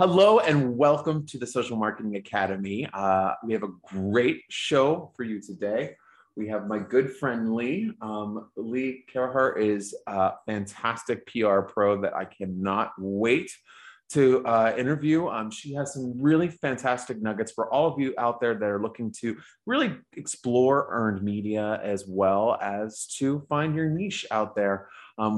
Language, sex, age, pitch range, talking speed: English, male, 30-49, 105-140 Hz, 165 wpm